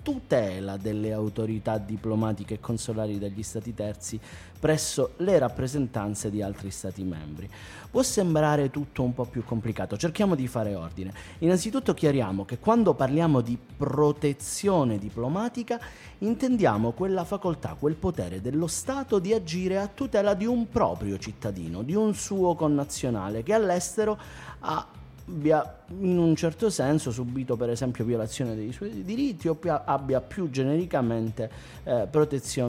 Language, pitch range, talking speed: Italian, 110-185 Hz, 135 wpm